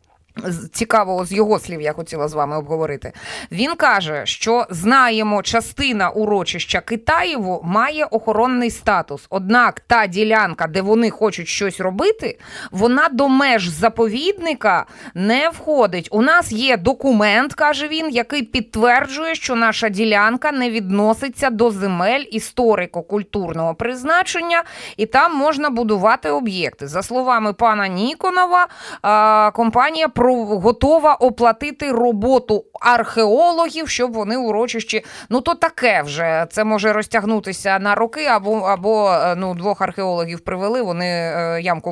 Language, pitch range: Ukrainian, 185-250 Hz